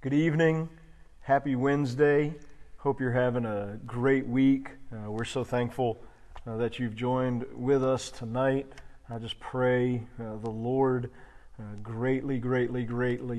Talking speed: 140 wpm